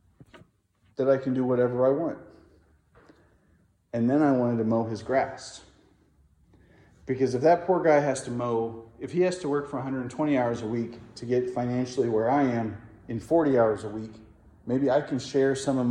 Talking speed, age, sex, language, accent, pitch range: 190 wpm, 40-59, male, English, American, 115-170 Hz